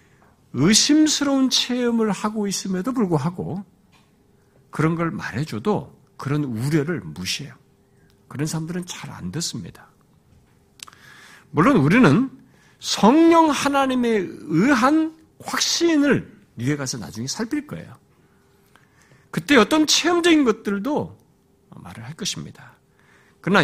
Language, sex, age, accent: Korean, male, 60-79, native